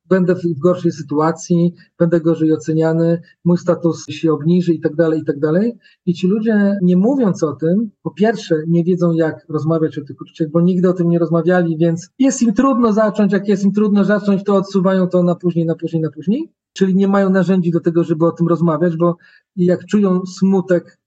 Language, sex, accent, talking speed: Polish, male, native, 205 wpm